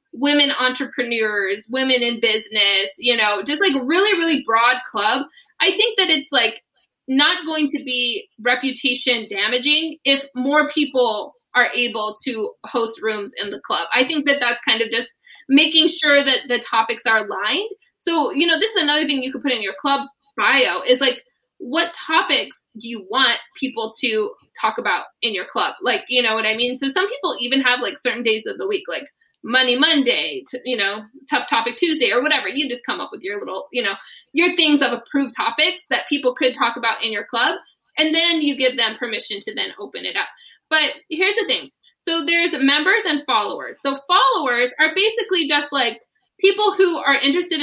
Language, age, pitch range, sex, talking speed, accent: English, 20-39, 245-315 Hz, female, 195 wpm, American